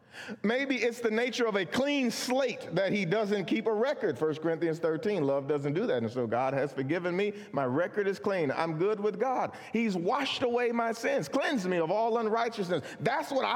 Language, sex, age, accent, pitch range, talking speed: English, male, 40-59, American, 155-230 Hz, 210 wpm